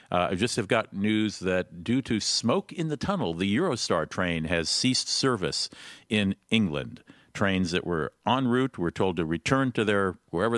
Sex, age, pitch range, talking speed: male, 50-69, 95-135 Hz, 185 wpm